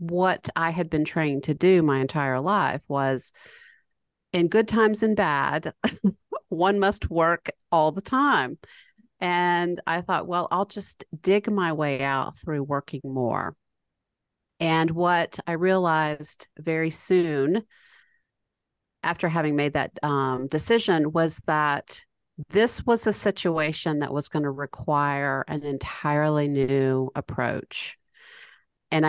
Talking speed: 130 wpm